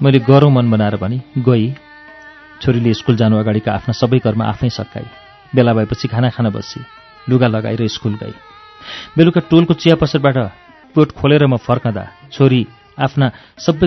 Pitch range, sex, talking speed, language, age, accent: 115-145 Hz, male, 130 wpm, German, 40-59, Indian